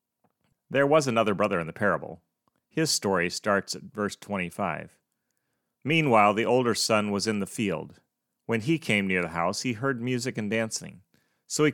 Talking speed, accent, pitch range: 175 wpm, American, 100-135 Hz